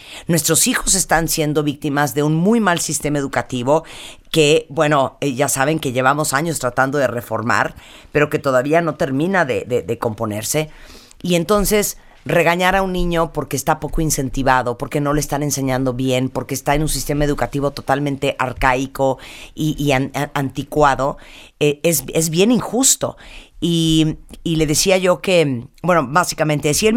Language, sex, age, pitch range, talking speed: Spanish, female, 40-59, 135-170 Hz, 160 wpm